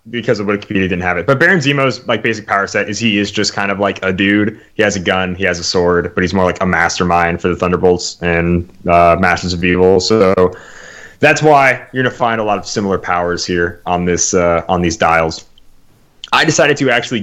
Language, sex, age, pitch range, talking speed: English, male, 20-39, 90-115 Hz, 235 wpm